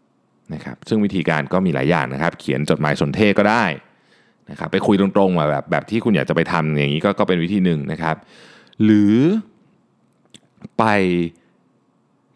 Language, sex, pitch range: Thai, male, 85-130 Hz